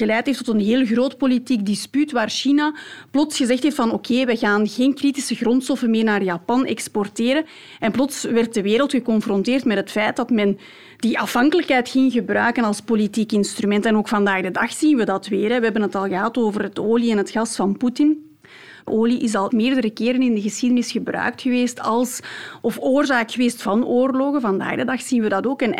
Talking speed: 200 wpm